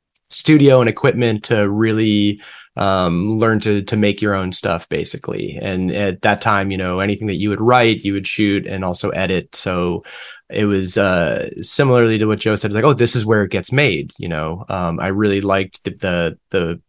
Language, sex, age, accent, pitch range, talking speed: English, male, 20-39, American, 95-115 Hz, 205 wpm